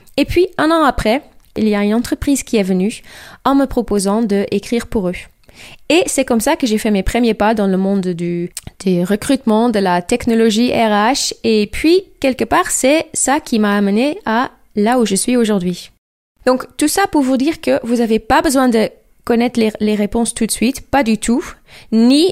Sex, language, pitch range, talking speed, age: female, French, 205-270 Hz, 205 wpm, 20-39